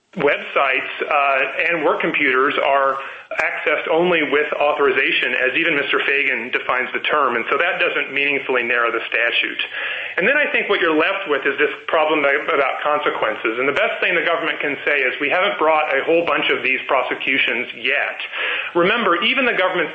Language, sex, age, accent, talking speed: English, male, 30-49, American, 185 wpm